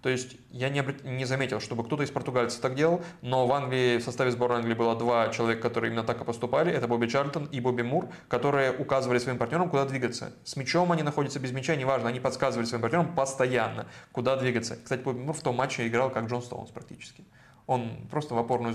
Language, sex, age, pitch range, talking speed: Russian, male, 20-39, 115-135 Hz, 210 wpm